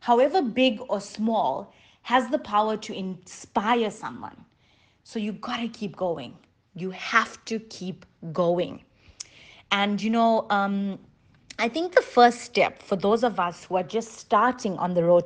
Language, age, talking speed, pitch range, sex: English, 30-49, 160 wpm, 185-240 Hz, female